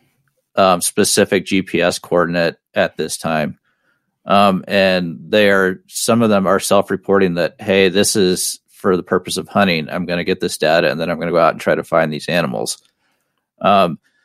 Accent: American